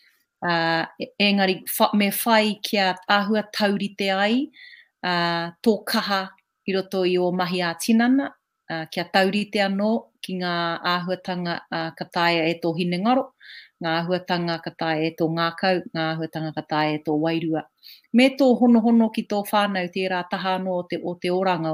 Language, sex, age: English, female, 30-49